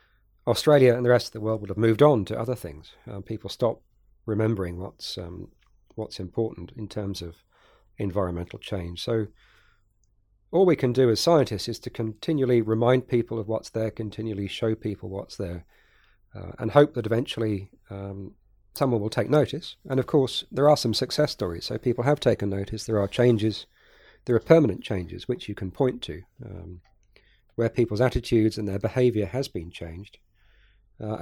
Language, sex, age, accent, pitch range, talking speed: English, male, 40-59, British, 100-120 Hz, 180 wpm